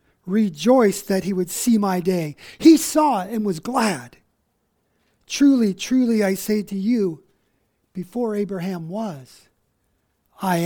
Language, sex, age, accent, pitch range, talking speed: English, male, 50-69, American, 180-245 Hz, 125 wpm